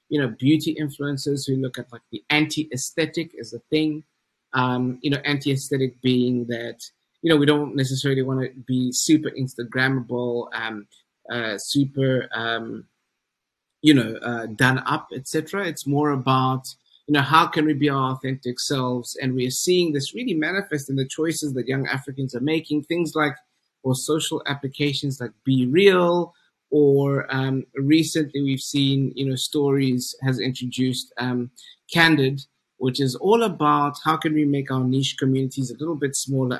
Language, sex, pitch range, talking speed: English, male, 125-150 Hz, 165 wpm